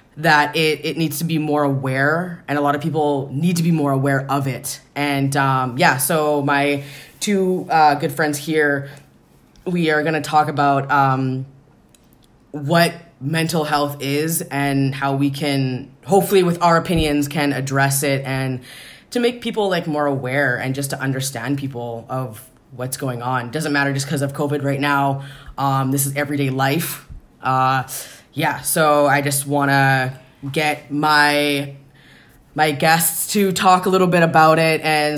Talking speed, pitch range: 170 wpm, 135-155 Hz